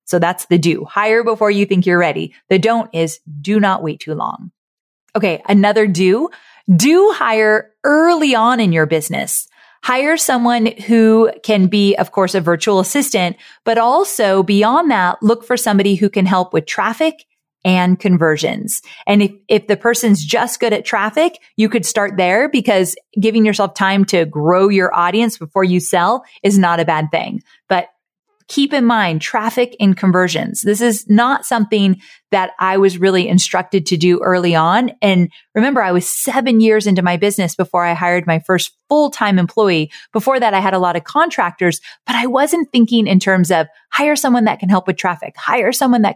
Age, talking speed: 30-49, 185 wpm